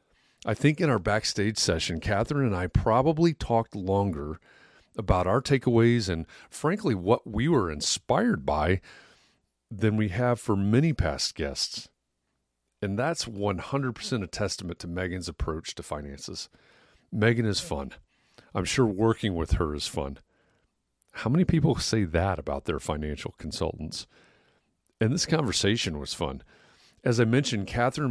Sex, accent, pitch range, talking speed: male, American, 85-115 Hz, 145 wpm